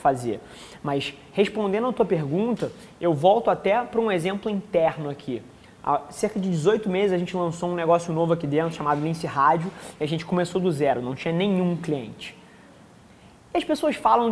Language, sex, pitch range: Portuguese, male, 160-200 Hz